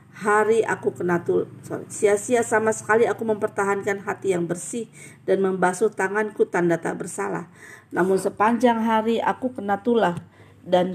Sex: female